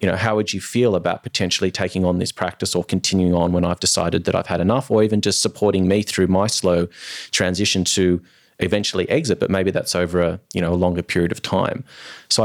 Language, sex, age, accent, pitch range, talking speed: English, male, 30-49, Australian, 90-95 Hz, 225 wpm